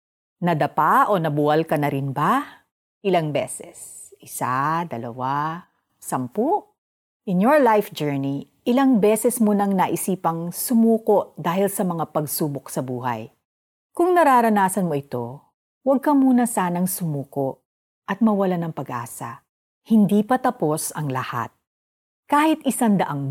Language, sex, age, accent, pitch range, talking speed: Filipino, female, 50-69, native, 145-235 Hz, 125 wpm